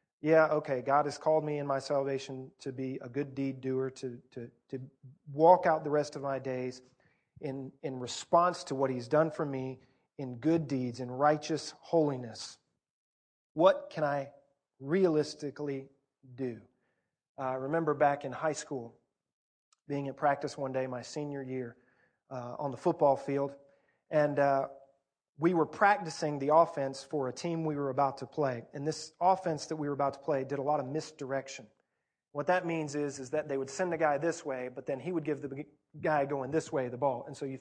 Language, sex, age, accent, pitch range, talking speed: English, male, 40-59, American, 135-160 Hz, 195 wpm